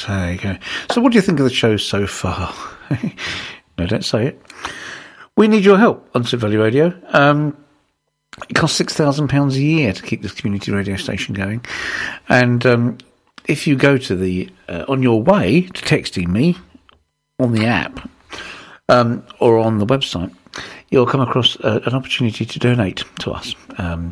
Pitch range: 110-150 Hz